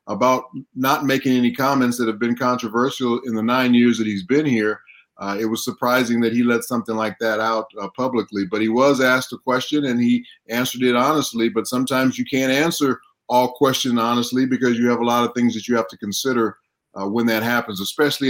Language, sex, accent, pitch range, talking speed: English, male, American, 115-130 Hz, 215 wpm